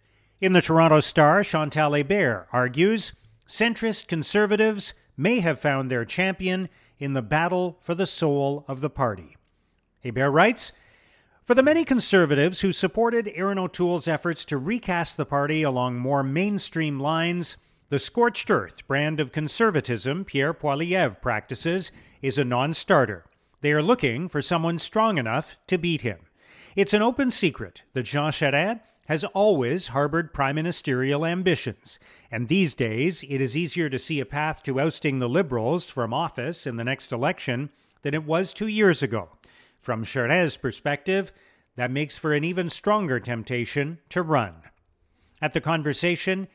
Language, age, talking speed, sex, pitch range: English, 40-59, 150 wpm, male, 130-180 Hz